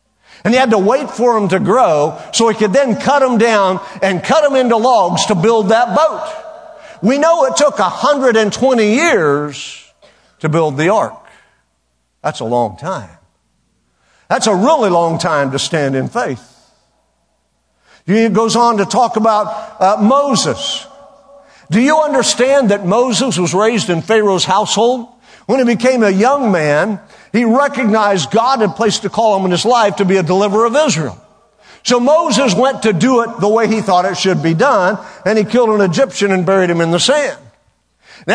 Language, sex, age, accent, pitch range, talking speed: English, male, 50-69, American, 195-275 Hz, 180 wpm